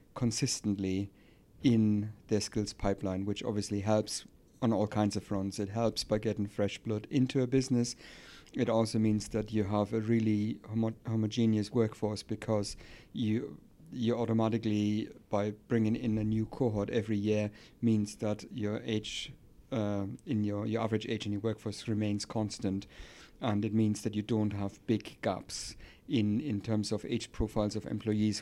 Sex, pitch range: male, 105-115 Hz